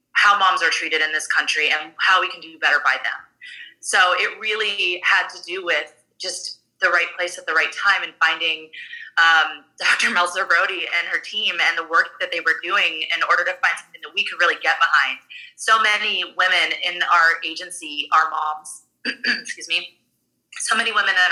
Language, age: English, 20-39